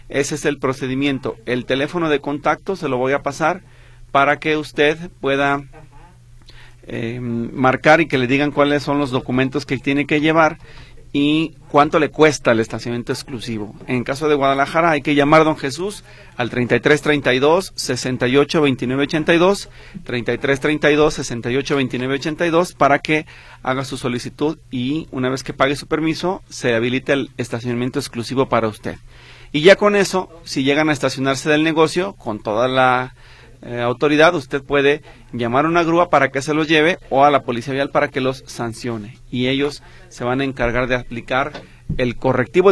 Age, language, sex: 40-59, Spanish, male